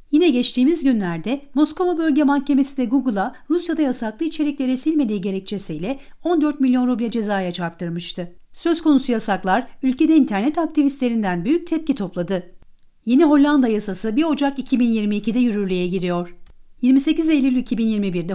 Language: Turkish